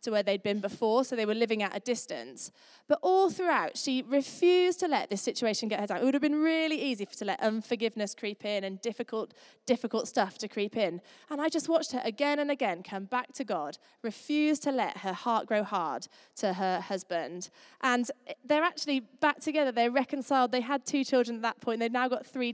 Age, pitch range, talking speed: 20-39, 200-265 Hz, 220 wpm